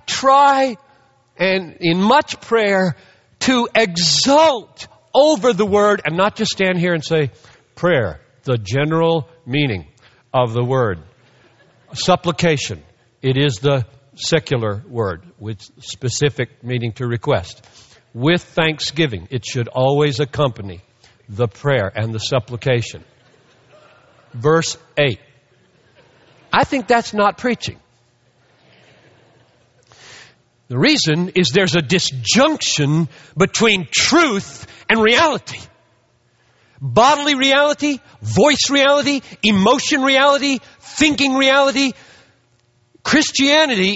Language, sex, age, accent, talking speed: English, male, 60-79, American, 100 wpm